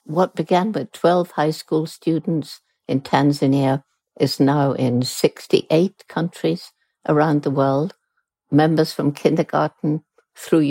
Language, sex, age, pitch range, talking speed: English, female, 60-79, 135-165 Hz, 120 wpm